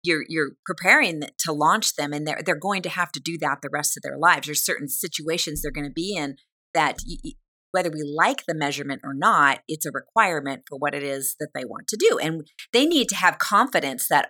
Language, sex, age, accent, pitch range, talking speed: English, female, 30-49, American, 150-205 Hz, 235 wpm